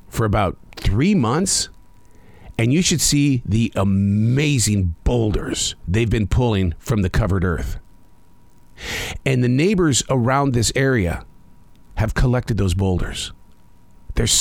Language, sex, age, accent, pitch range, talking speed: English, male, 50-69, American, 95-130 Hz, 120 wpm